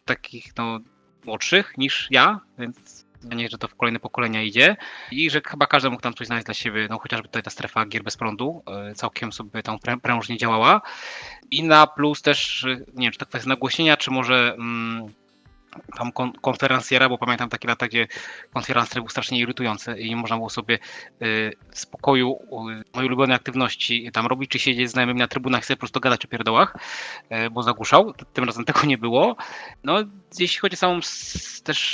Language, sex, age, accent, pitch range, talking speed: Polish, male, 20-39, native, 115-135 Hz, 195 wpm